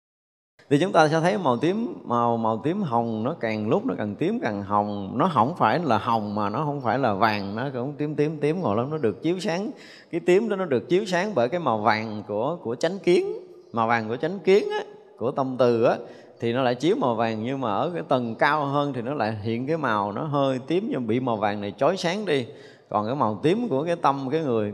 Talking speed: 255 wpm